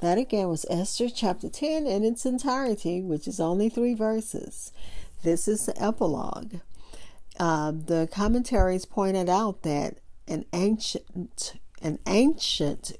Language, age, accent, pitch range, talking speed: English, 50-69, American, 165-215 Hz, 125 wpm